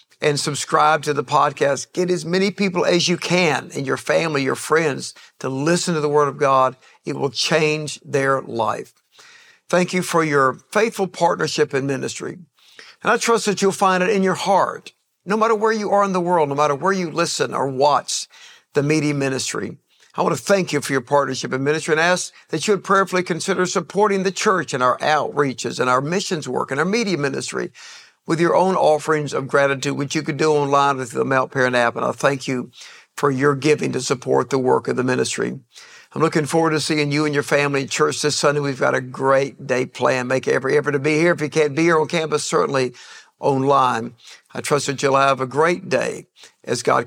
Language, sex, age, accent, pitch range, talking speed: English, male, 60-79, American, 140-180 Hz, 215 wpm